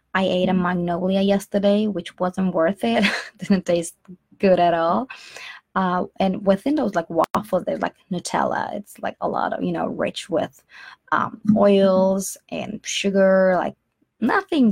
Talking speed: 155 wpm